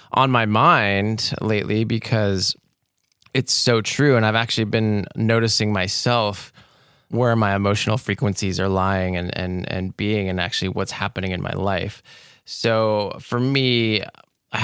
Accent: American